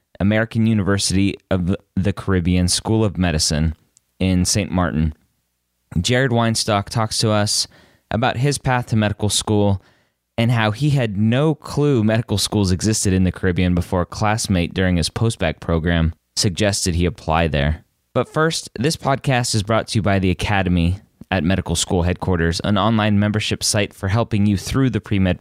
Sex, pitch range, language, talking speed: male, 90-110 Hz, English, 165 wpm